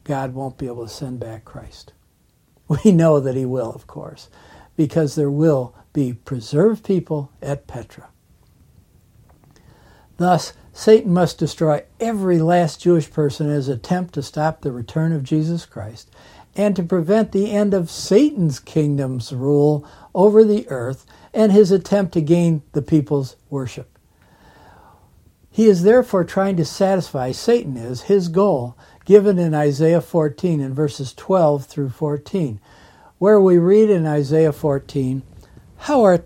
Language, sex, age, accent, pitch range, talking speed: English, male, 60-79, American, 135-185 Hz, 145 wpm